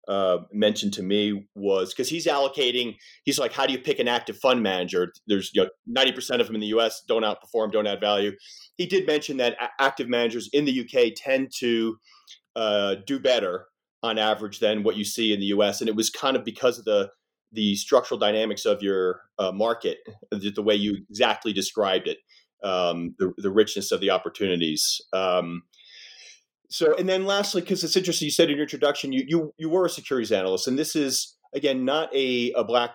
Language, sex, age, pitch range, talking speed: English, male, 30-49, 105-140 Hz, 210 wpm